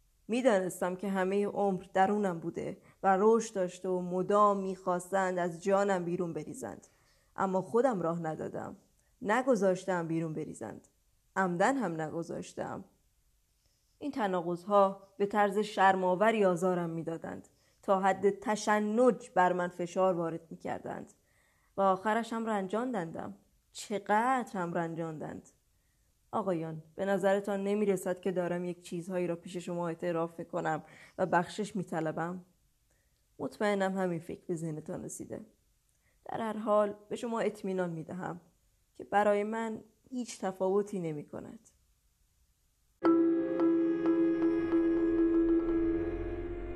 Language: Persian